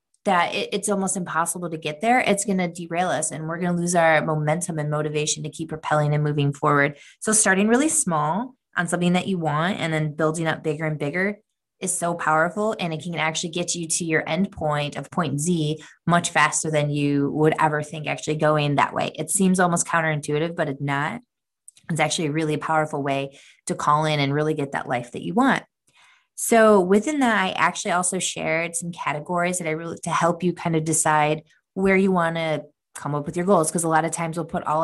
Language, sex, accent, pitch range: English, female, American, 155-180 Hz